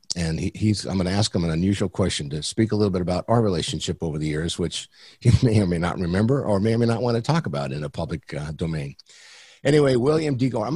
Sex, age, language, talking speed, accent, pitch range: male, 50-69, English, 270 wpm, American, 85-105 Hz